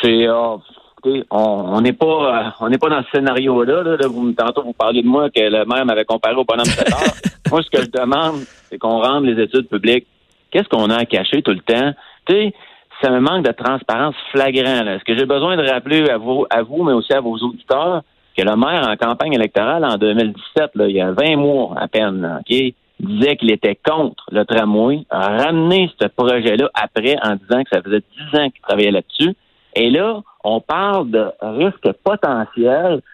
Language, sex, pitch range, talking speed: French, male, 115-155 Hz, 210 wpm